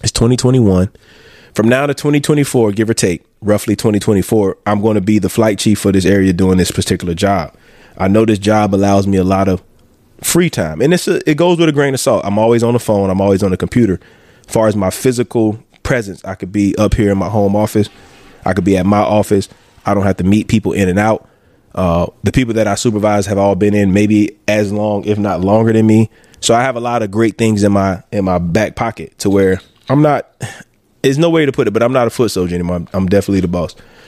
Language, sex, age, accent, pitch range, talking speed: English, male, 20-39, American, 100-125 Hz, 255 wpm